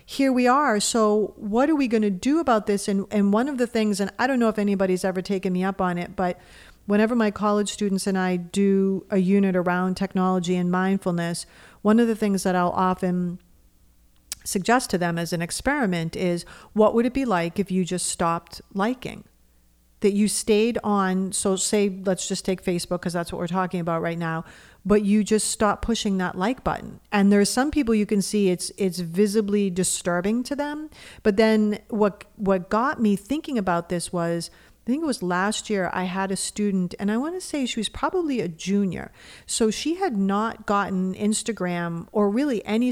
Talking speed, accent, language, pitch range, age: 205 wpm, American, English, 180-215 Hz, 50-69